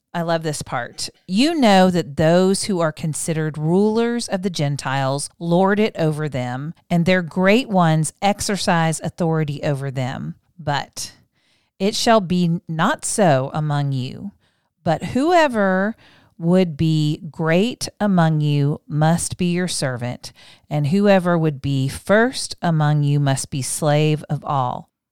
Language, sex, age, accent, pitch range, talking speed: English, female, 40-59, American, 150-185 Hz, 140 wpm